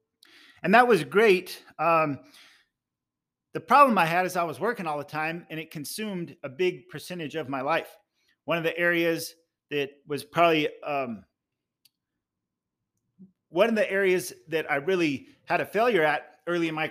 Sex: male